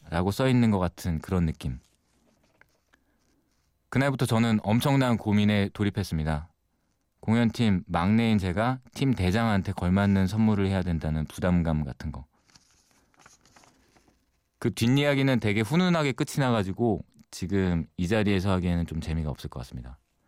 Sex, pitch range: male, 85-115 Hz